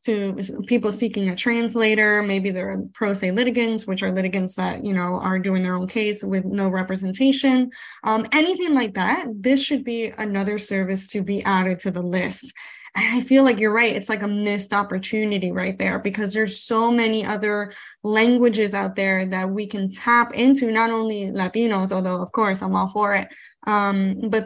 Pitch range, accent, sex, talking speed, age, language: 190-230 Hz, American, female, 190 wpm, 20-39, English